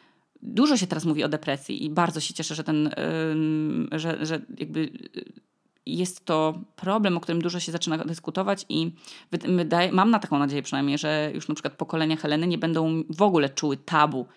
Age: 20-39